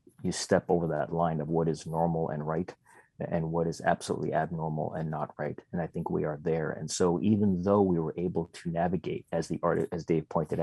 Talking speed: 225 wpm